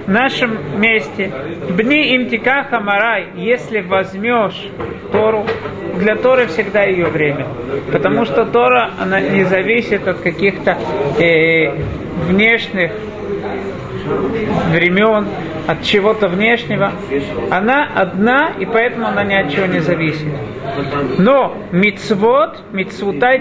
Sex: male